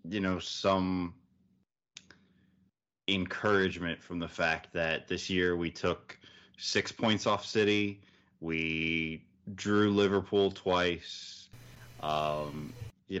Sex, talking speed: male, 100 wpm